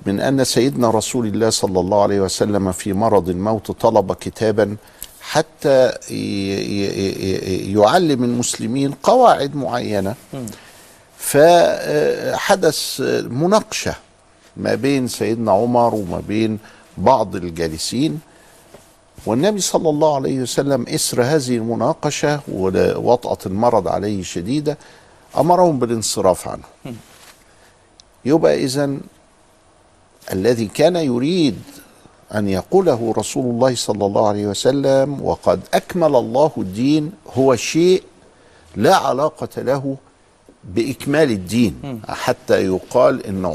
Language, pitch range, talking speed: Arabic, 100-140 Hz, 100 wpm